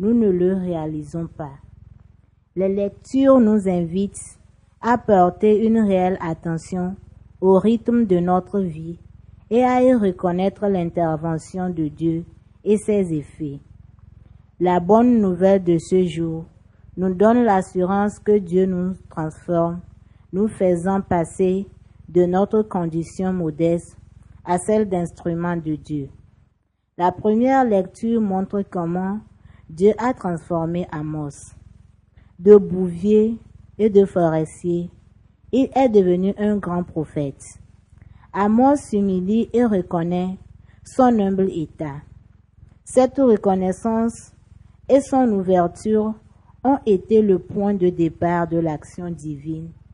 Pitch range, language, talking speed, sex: 150-200 Hz, French, 115 wpm, female